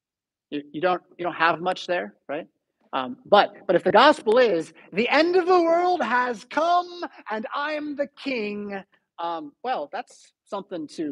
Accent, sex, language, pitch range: American, male, English, 155-240 Hz